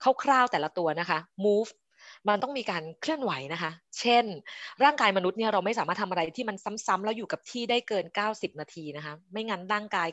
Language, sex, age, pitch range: Thai, female, 20-39, 185-240 Hz